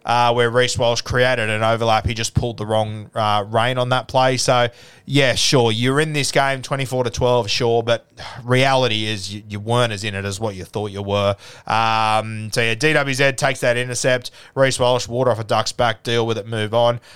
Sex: male